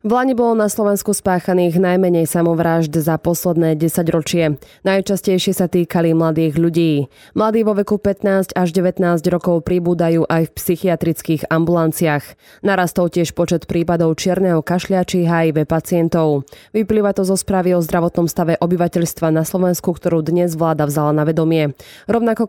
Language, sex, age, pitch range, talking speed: Slovak, female, 20-39, 165-190 Hz, 140 wpm